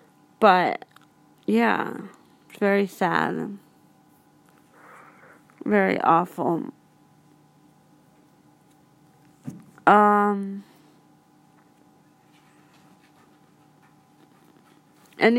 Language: English